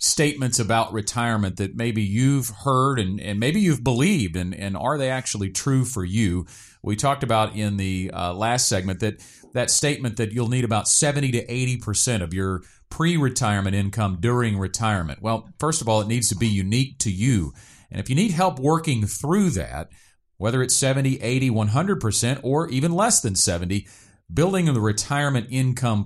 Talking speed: 185 wpm